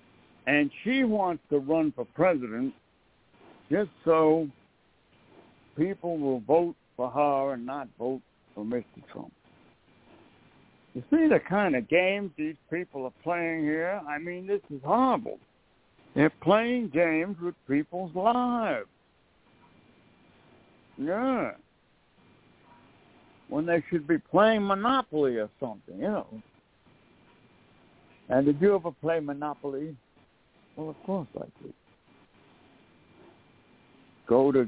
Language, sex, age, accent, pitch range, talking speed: English, male, 60-79, American, 130-180 Hz, 115 wpm